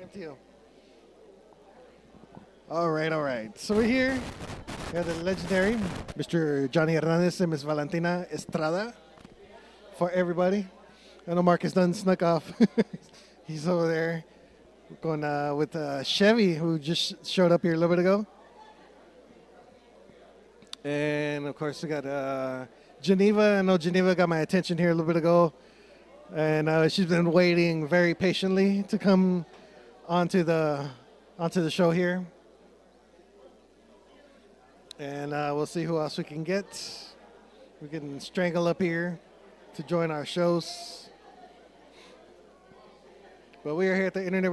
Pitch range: 160-195 Hz